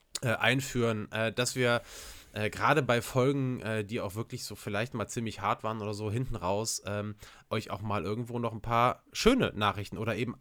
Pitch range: 105-130 Hz